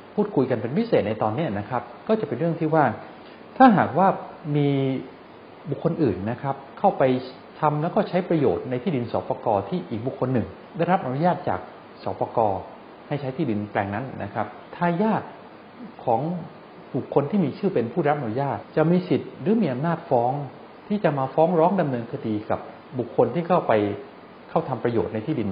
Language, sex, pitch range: English, male, 115-170 Hz